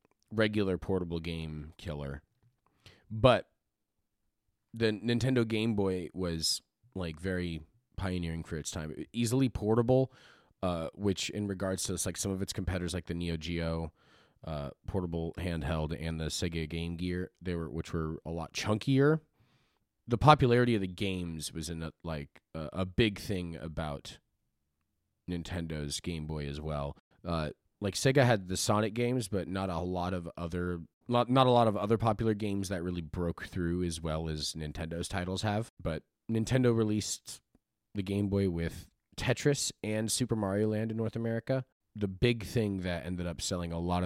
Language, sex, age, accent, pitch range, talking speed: English, male, 30-49, American, 80-110 Hz, 165 wpm